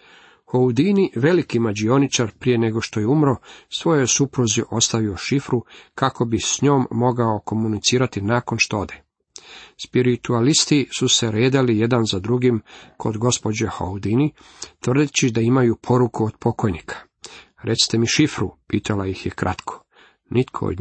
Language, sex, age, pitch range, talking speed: Croatian, male, 40-59, 105-135 Hz, 135 wpm